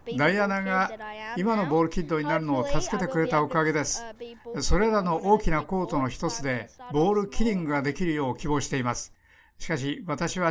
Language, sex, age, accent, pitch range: Japanese, male, 60-79, native, 135-190 Hz